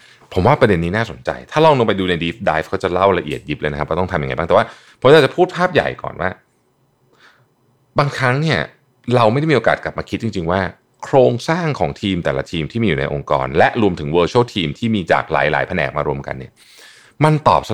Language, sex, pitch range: Thai, male, 80-120 Hz